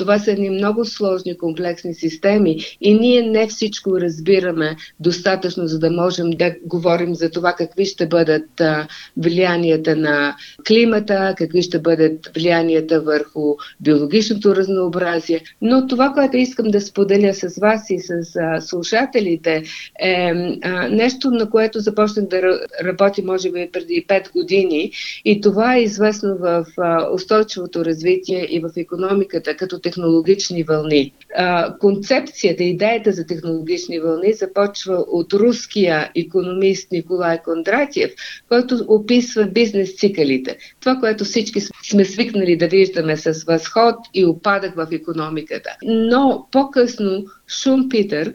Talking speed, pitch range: 125 wpm, 170-215 Hz